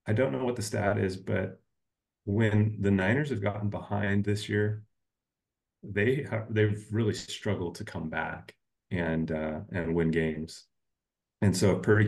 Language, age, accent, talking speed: English, 30-49, American, 165 wpm